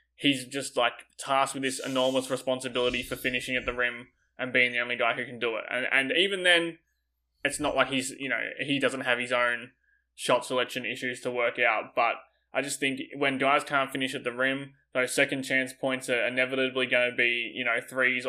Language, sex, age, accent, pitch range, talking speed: English, male, 20-39, Australian, 125-135 Hz, 215 wpm